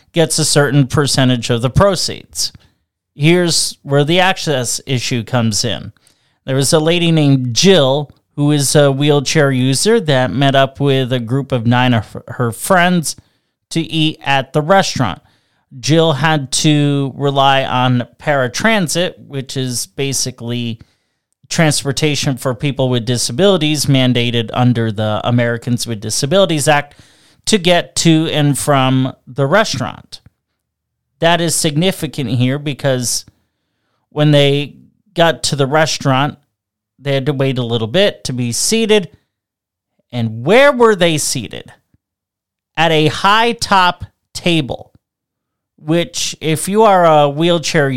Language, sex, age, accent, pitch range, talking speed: English, male, 30-49, American, 120-160 Hz, 135 wpm